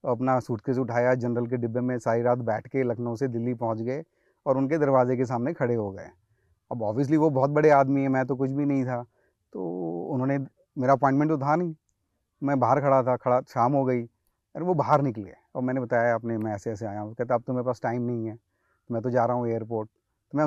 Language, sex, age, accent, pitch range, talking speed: Hindi, male, 30-49, native, 120-150 Hz, 240 wpm